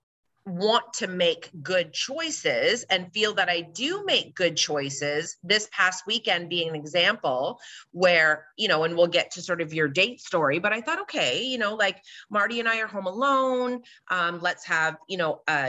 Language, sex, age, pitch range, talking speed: English, female, 30-49, 165-220 Hz, 190 wpm